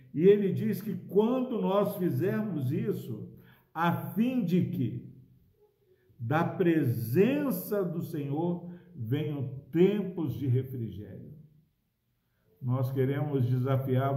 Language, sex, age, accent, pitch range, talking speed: Portuguese, male, 60-79, Brazilian, 130-175 Hz, 95 wpm